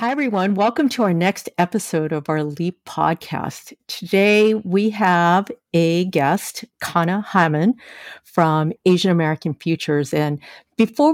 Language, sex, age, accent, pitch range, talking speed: English, female, 50-69, American, 155-195 Hz, 130 wpm